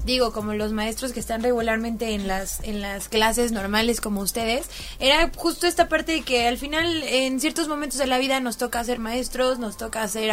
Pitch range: 230-290 Hz